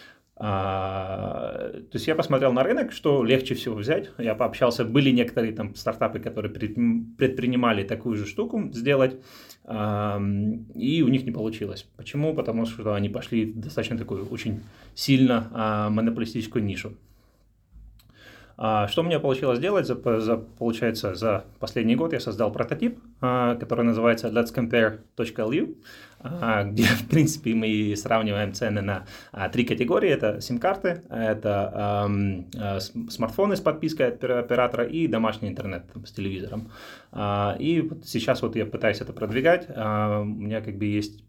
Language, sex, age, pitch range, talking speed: Russian, male, 20-39, 105-125 Hz, 140 wpm